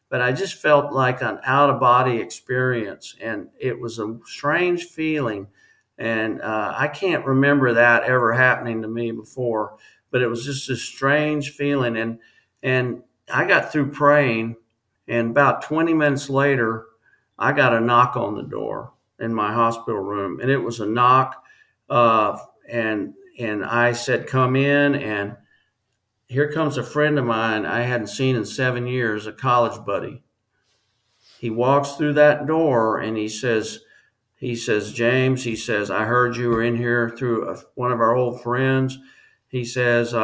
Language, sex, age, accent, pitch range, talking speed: English, male, 50-69, American, 115-135 Hz, 165 wpm